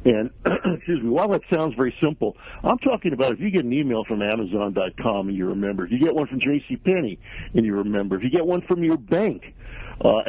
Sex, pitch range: male, 120-165 Hz